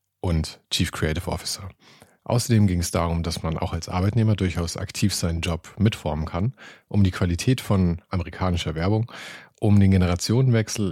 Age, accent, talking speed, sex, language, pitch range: 40-59, German, 155 wpm, male, German, 85-110 Hz